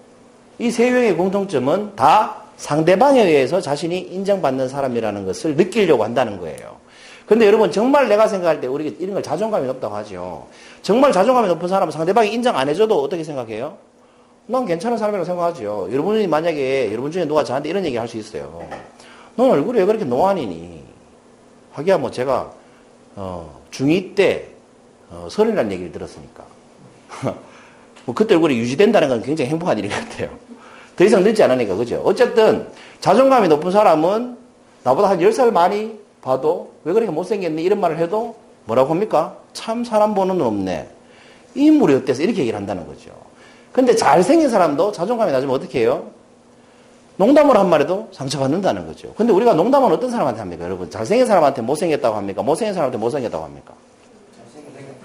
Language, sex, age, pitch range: Korean, male, 40-59, 175-250 Hz